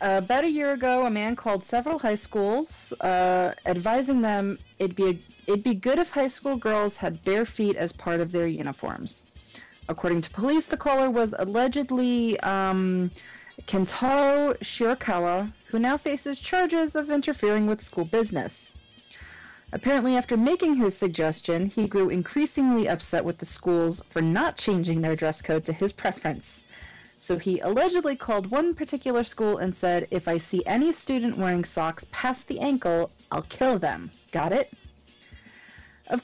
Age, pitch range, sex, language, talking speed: 30-49, 185-275 Hz, female, English, 160 wpm